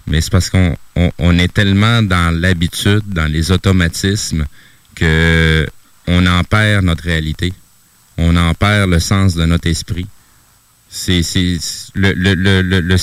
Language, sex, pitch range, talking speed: French, male, 90-115 Hz, 120 wpm